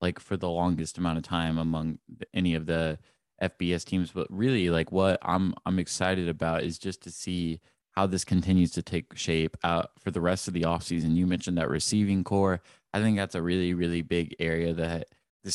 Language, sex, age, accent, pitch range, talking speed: English, male, 20-39, American, 85-95 Hz, 205 wpm